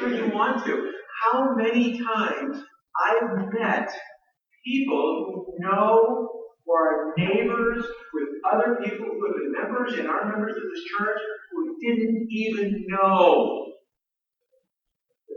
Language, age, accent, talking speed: English, 50-69, American, 130 wpm